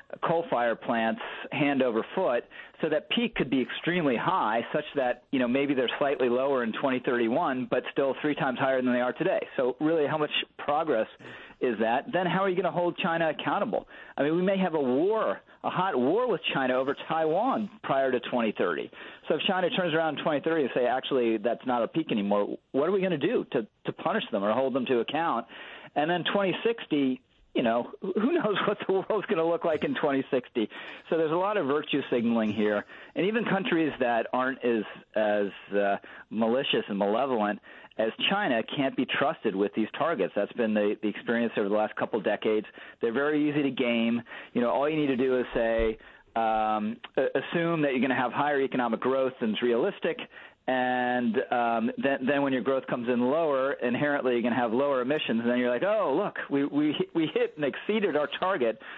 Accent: American